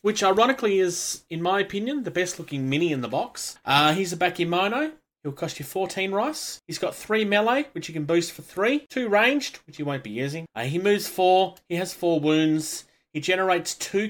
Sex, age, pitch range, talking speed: male, 30-49, 140-195 Hz, 215 wpm